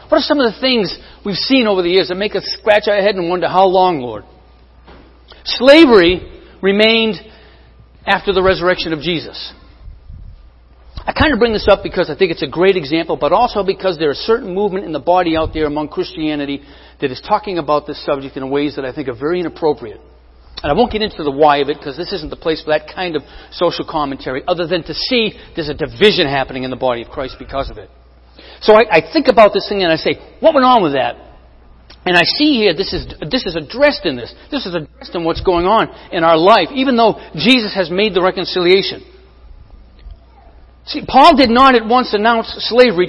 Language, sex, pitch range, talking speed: English, male, 140-220 Hz, 220 wpm